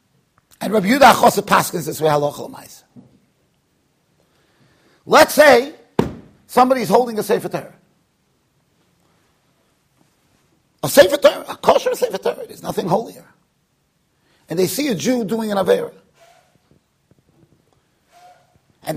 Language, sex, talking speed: English, male, 100 wpm